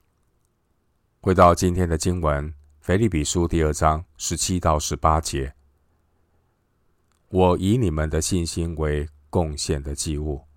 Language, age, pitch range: Chinese, 50-69, 75-85 Hz